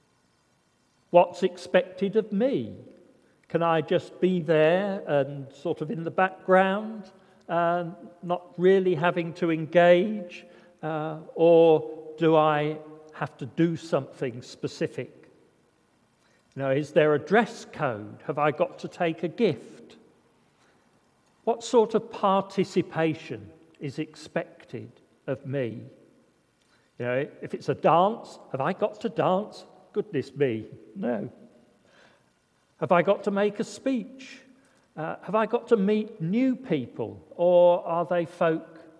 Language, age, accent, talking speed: English, 50-69, British, 130 wpm